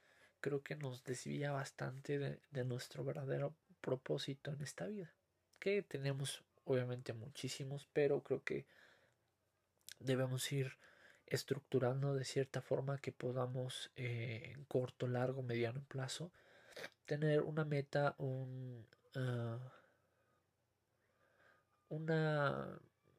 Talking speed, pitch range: 100 wpm, 125-140 Hz